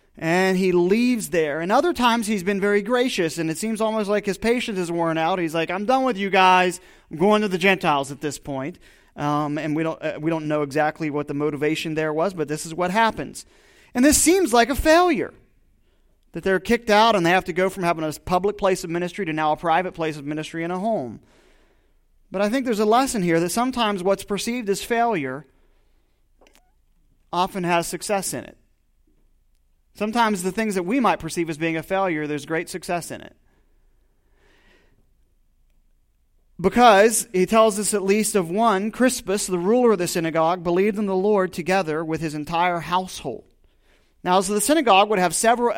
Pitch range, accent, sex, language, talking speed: 165-215 Hz, American, male, English, 195 wpm